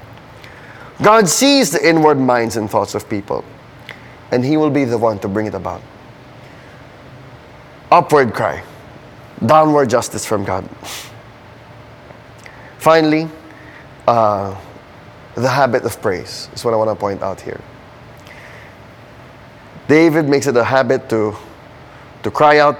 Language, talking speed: English, 125 wpm